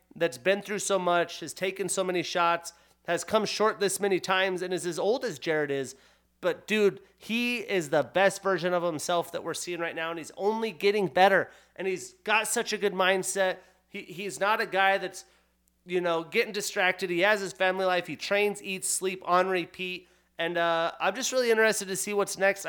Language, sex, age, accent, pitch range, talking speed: English, male, 30-49, American, 180-220 Hz, 210 wpm